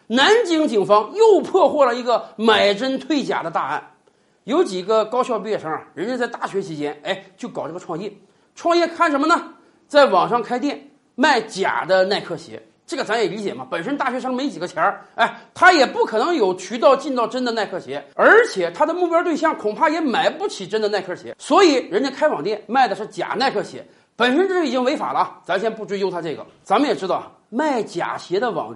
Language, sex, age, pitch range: Chinese, male, 40-59, 220-340 Hz